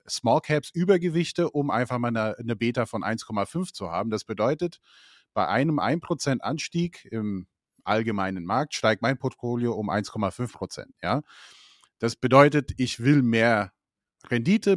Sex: male